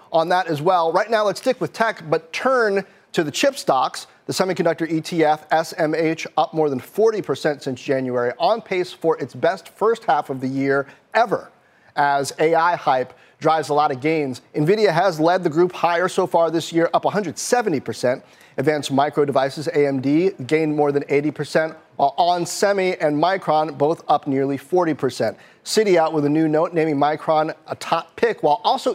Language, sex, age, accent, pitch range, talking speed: English, male, 30-49, American, 150-200 Hz, 180 wpm